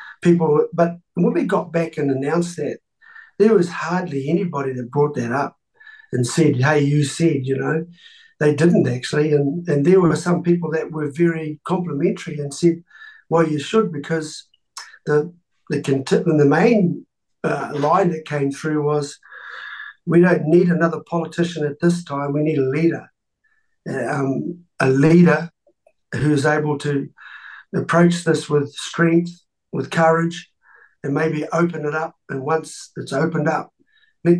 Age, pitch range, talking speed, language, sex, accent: 50-69, 145-175 Hz, 155 wpm, English, male, Australian